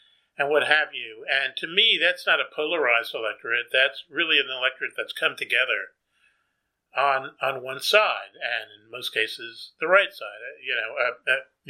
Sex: male